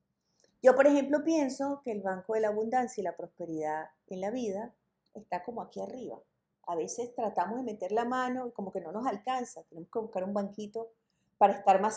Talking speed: 205 wpm